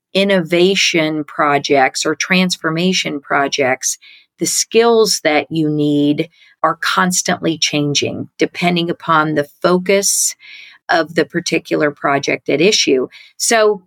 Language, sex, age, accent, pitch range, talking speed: English, female, 50-69, American, 155-195 Hz, 105 wpm